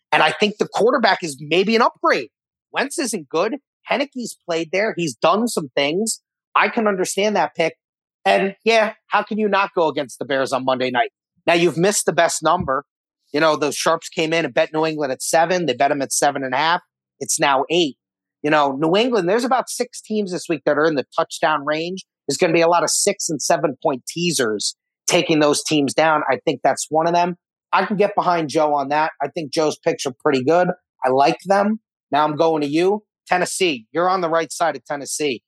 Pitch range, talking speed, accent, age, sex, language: 145-180 Hz, 225 wpm, American, 30-49, male, English